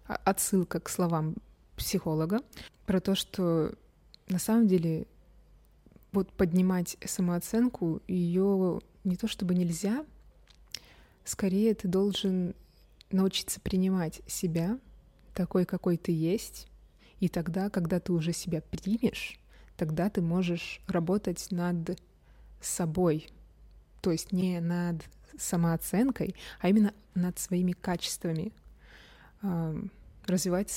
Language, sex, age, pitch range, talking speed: Russian, female, 20-39, 170-195 Hz, 100 wpm